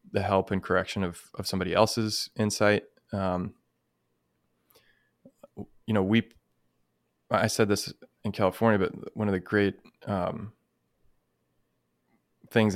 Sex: male